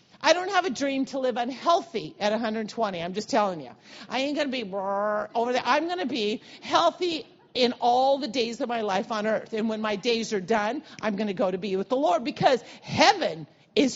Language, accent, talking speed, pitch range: English, American, 230 wpm, 215-270 Hz